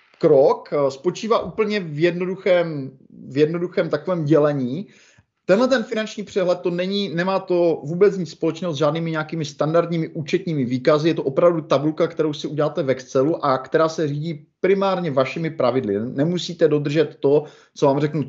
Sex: male